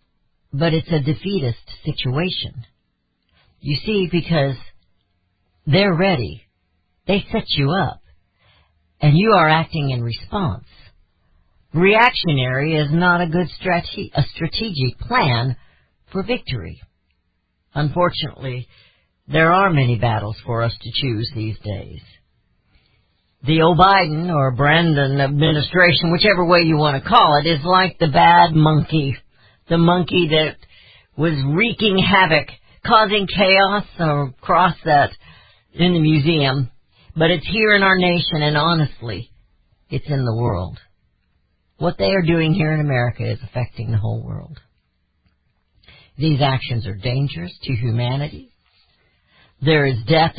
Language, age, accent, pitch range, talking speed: English, 60-79, American, 115-170 Hz, 125 wpm